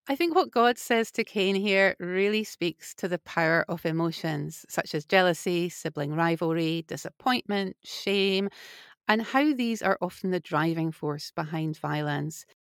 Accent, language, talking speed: British, English, 150 wpm